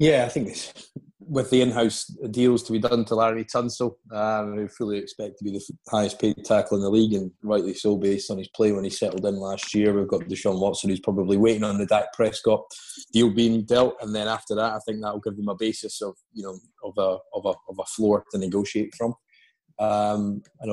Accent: British